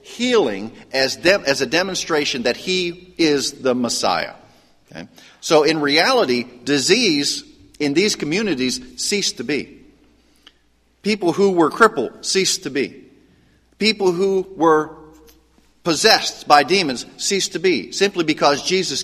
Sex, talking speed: male, 125 wpm